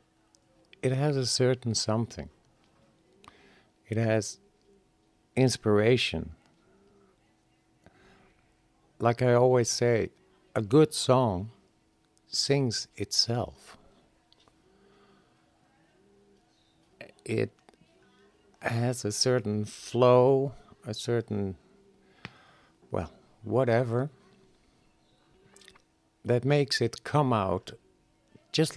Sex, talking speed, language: male, 65 wpm, English